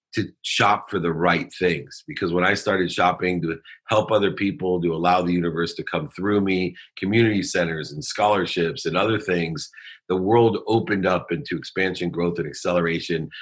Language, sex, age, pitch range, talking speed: English, male, 40-59, 85-105 Hz, 175 wpm